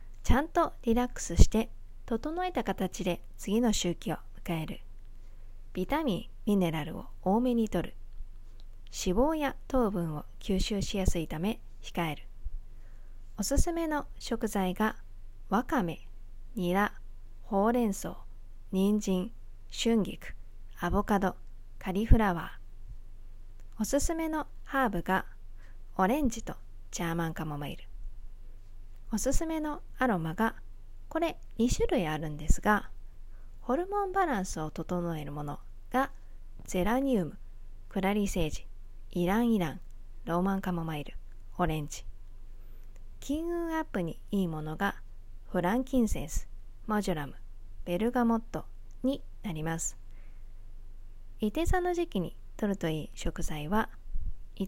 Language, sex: Japanese, female